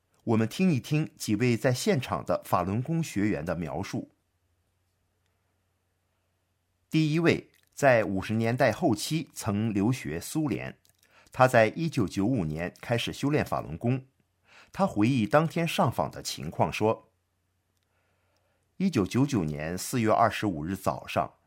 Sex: male